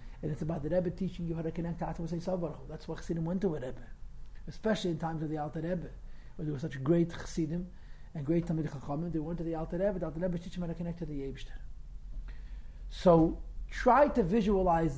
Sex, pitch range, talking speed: male, 155-190 Hz, 230 wpm